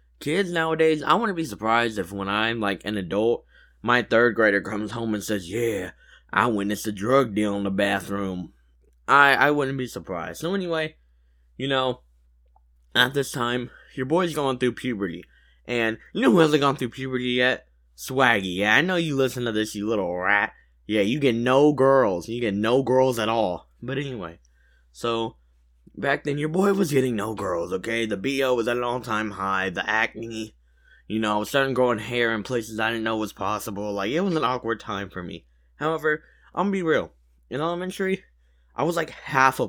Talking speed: 200 wpm